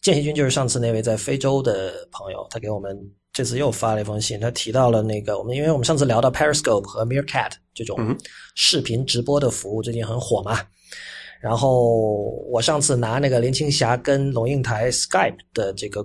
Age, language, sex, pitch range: 20-39, Chinese, male, 110-140 Hz